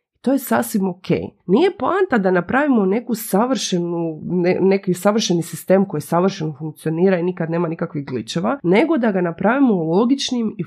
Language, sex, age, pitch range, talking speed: Croatian, female, 30-49, 170-205 Hz, 155 wpm